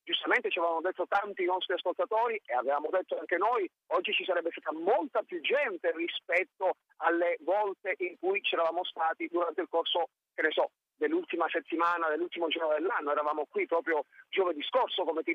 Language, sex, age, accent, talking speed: Italian, male, 40-59, native, 175 wpm